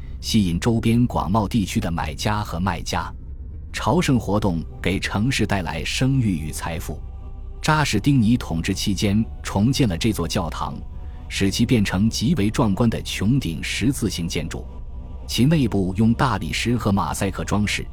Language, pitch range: Chinese, 80-110 Hz